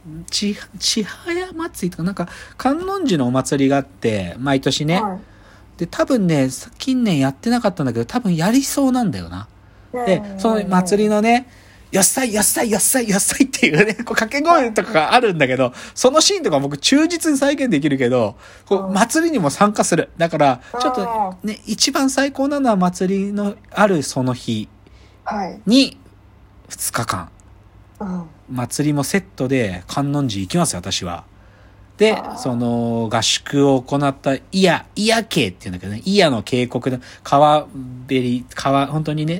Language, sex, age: Japanese, male, 40-59